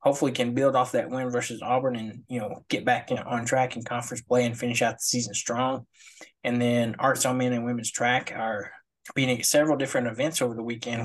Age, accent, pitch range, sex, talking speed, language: 20-39, American, 120-130 Hz, male, 230 wpm, English